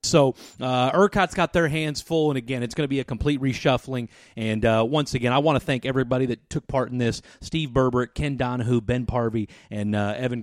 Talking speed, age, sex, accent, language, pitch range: 225 wpm, 30-49, male, American, English, 100-140 Hz